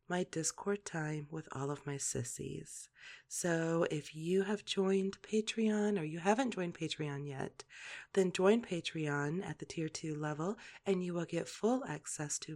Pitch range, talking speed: 160-215 Hz, 165 wpm